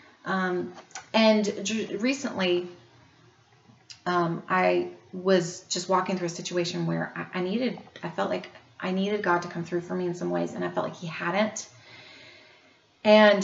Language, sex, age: English, female, 30-49